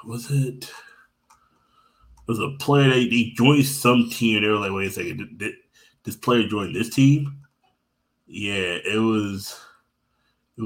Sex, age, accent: male, 20-39, American